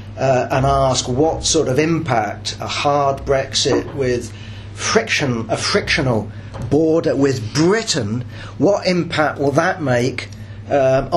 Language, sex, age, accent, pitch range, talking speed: English, male, 40-59, British, 110-150 Hz, 125 wpm